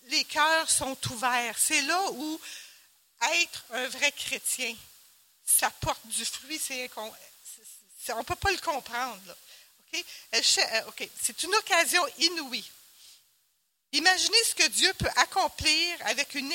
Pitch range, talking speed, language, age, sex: 240-315 Hz, 120 wpm, French, 60-79, female